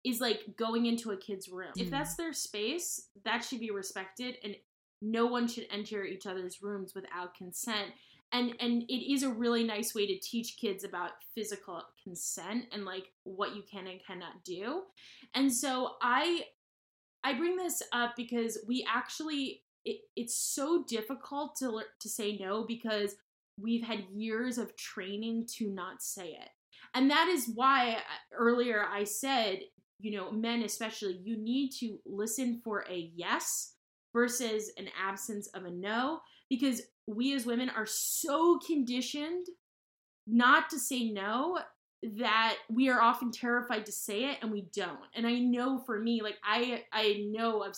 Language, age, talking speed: English, 10-29, 165 wpm